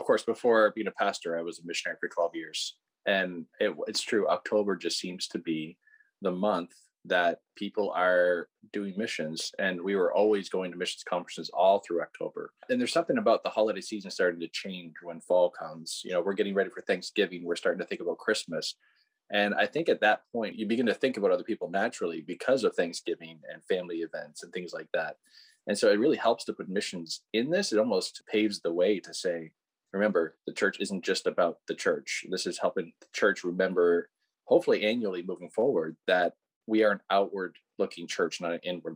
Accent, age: American, 20-39